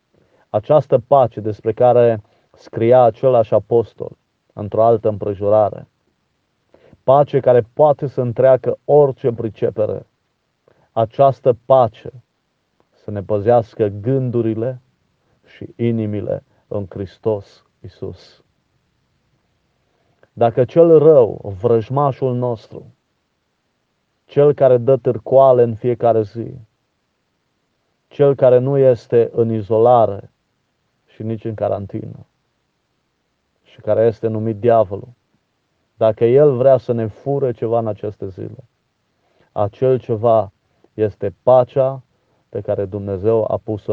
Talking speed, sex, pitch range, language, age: 100 wpm, male, 110-130 Hz, Romanian, 40-59